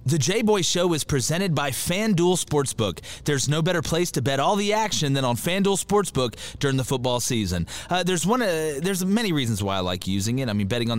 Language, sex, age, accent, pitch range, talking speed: English, male, 30-49, American, 120-160 Hz, 225 wpm